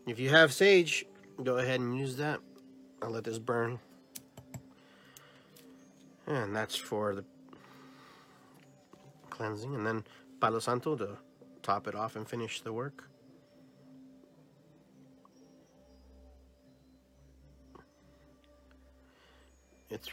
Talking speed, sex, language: 90 wpm, male, English